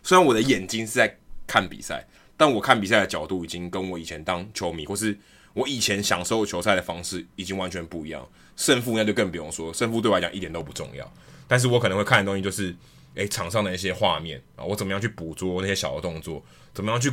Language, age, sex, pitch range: Chinese, 20-39, male, 90-115 Hz